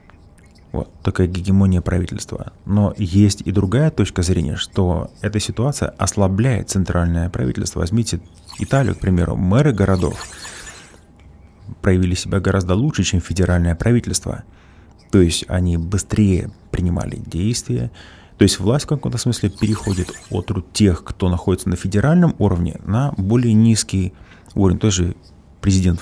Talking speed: 130 wpm